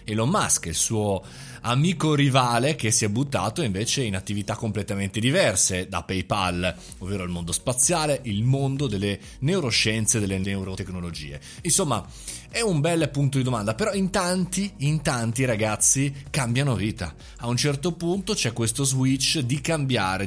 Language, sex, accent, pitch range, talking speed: Italian, male, native, 100-140 Hz, 150 wpm